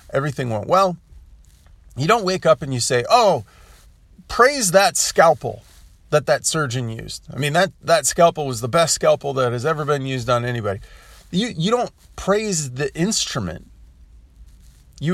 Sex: male